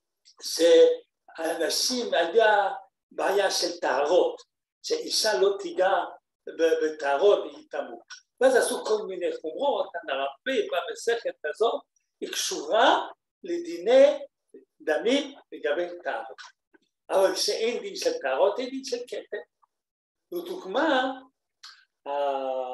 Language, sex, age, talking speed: Hebrew, male, 60-79, 80 wpm